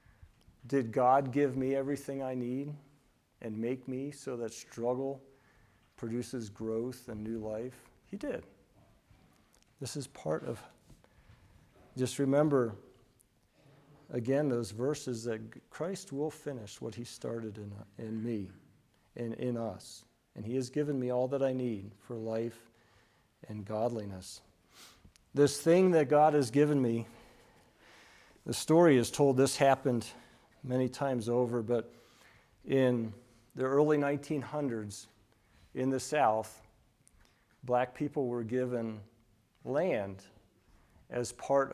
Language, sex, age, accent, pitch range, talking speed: English, male, 50-69, American, 110-135 Hz, 125 wpm